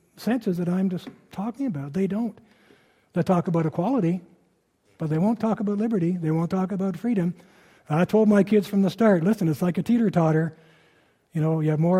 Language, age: English, 60-79